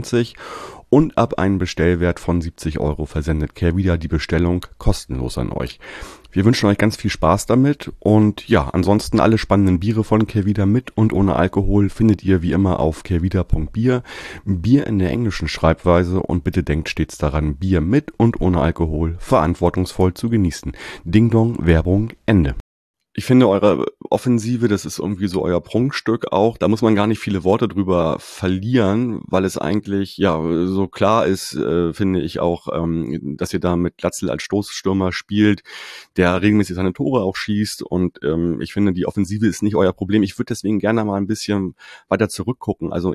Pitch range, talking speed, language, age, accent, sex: 85-105 Hz, 175 wpm, German, 30-49, German, male